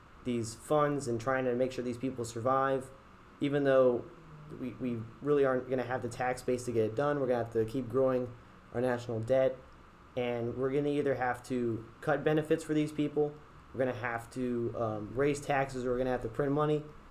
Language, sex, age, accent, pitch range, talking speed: English, male, 30-49, American, 115-135 Hz, 225 wpm